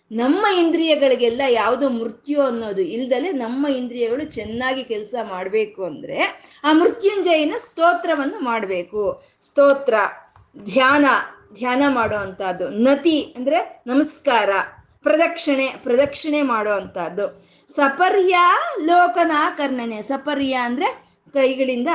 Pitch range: 230-310 Hz